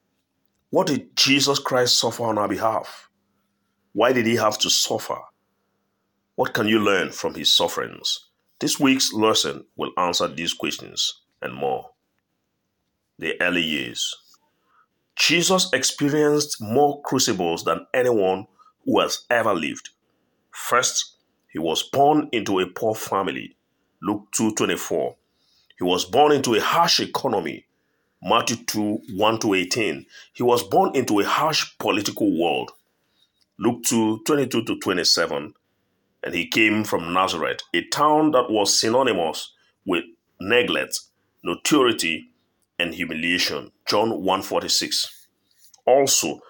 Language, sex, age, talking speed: English, male, 50-69, 120 wpm